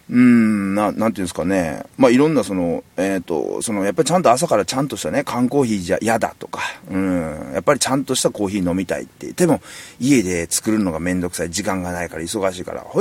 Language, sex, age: Japanese, male, 30-49